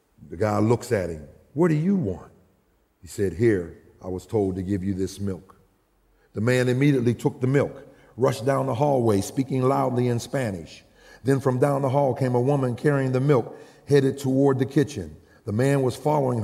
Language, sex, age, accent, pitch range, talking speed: English, male, 40-59, American, 120-165 Hz, 195 wpm